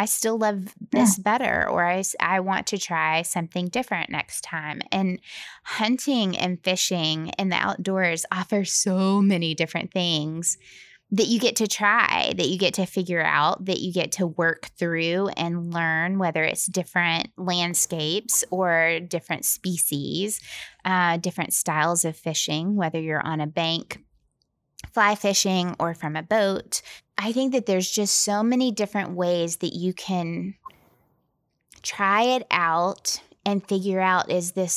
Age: 20-39